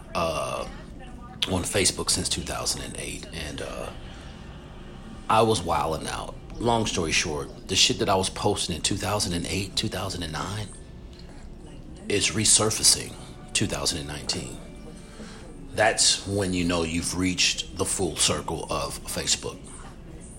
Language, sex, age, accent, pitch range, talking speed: English, male, 40-59, American, 80-100 Hz, 110 wpm